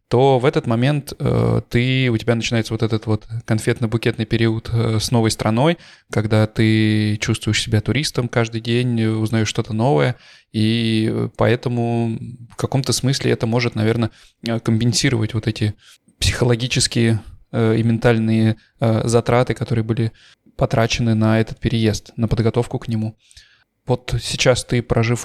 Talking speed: 130 wpm